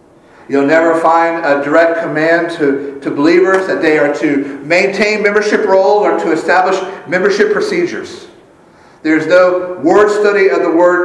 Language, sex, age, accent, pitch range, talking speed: English, male, 50-69, American, 155-225 Hz, 150 wpm